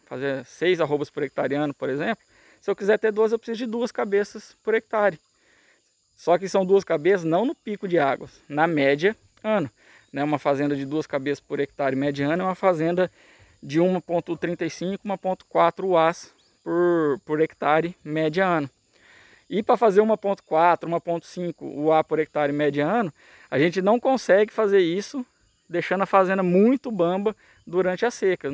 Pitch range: 150-195 Hz